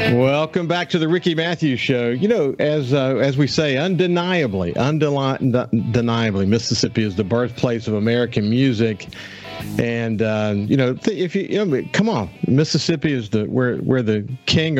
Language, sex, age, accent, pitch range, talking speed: English, male, 50-69, American, 110-145 Hz, 170 wpm